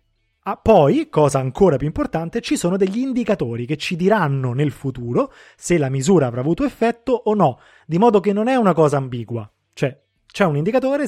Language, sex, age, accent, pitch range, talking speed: Italian, male, 30-49, native, 140-210 Hz, 190 wpm